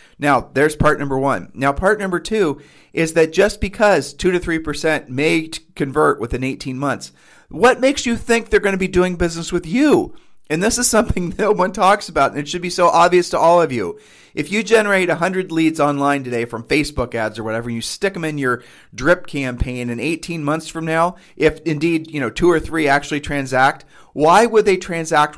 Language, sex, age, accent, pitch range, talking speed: English, male, 40-59, American, 125-175 Hz, 215 wpm